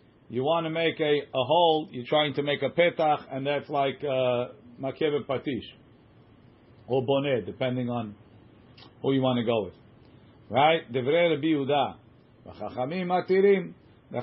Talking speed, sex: 150 wpm, male